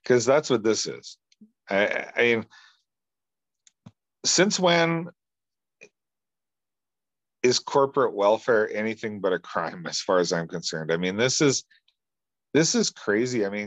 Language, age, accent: English, 40-59, American